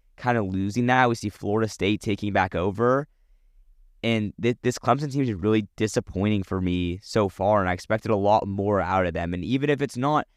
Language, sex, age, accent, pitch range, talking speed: English, male, 20-39, American, 95-110 Hz, 215 wpm